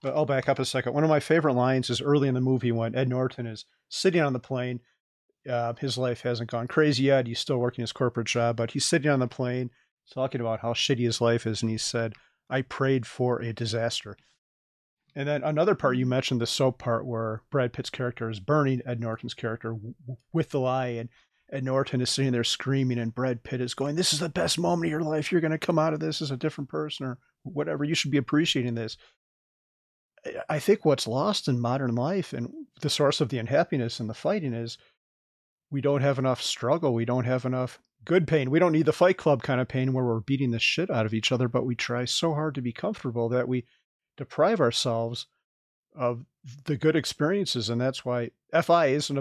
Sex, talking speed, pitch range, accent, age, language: male, 225 wpm, 120-145 Hz, American, 40-59, English